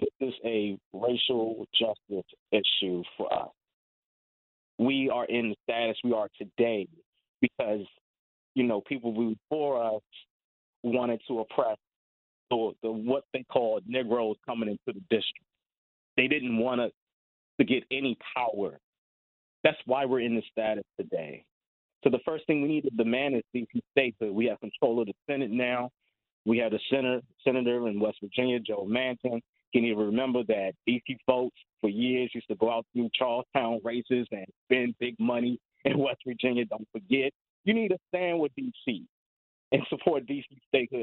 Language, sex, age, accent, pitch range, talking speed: English, male, 30-49, American, 115-140 Hz, 165 wpm